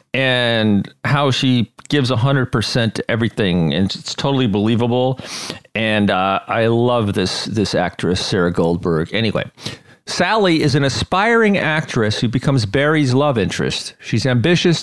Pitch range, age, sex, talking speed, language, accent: 115-155 Hz, 40-59, male, 135 wpm, English, American